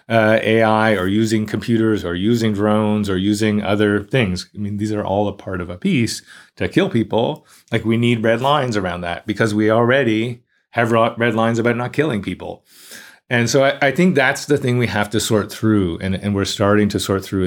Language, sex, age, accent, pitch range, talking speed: German, male, 30-49, American, 95-115 Hz, 215 wpm